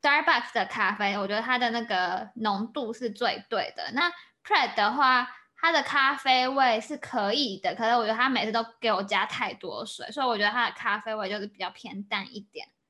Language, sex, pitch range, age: Chinese, female, 215-275 Hz, 10-29